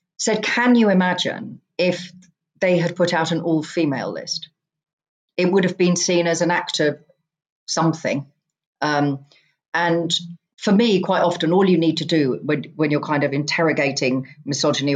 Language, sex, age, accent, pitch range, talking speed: English, female, 40-59, British, 140-180 Hz, 160 wpm